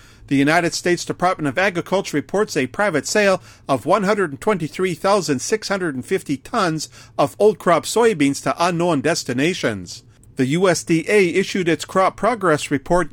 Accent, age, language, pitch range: American, 50-69, English, 140-190 Hz